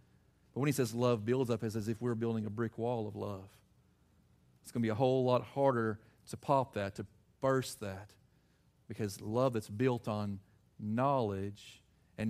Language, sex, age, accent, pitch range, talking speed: English, male, 40-59, American, 100-125 Hz, 185 wpm